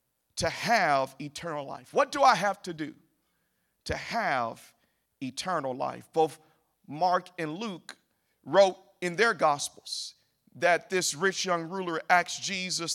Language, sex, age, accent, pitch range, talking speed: English, male, 50-69, American, 170-210 Hz, 135 wpm